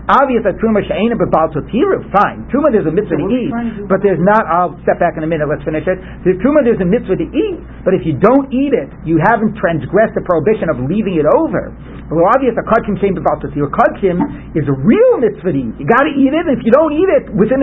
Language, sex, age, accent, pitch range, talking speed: English, male, 60-79, American, 170-230 Hz, 240 wpm